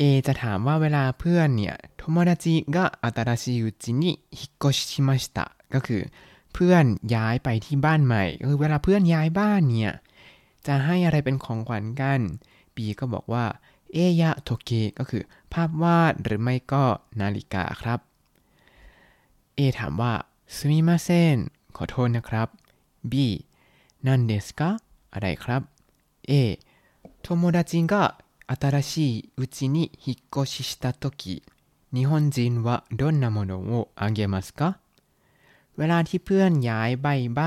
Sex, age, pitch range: male, 20-39, 110-150 Hz